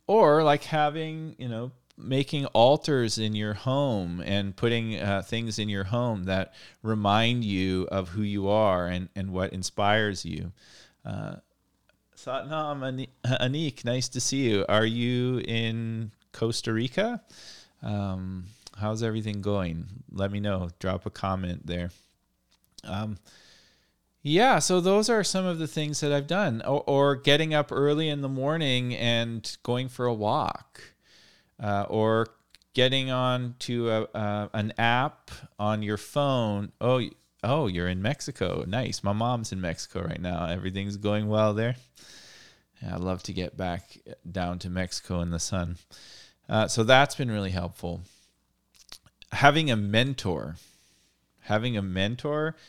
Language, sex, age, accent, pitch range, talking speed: English, male, 40-59, American, 95-130 Hz, 145 wpm